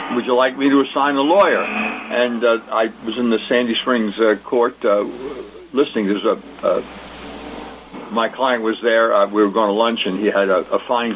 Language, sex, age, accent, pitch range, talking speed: English, male, 60-79, American, 115-180 Hz, 210 wpm